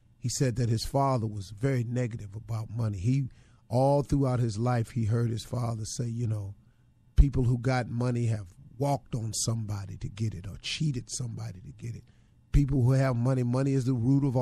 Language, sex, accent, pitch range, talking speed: English, male, American, 115-130 Hz, 200 wpm